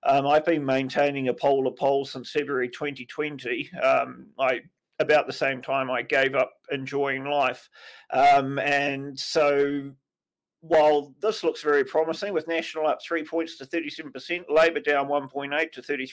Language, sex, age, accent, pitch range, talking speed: English, male, 40-59, Australian, 140-170 Hz, 155 wpm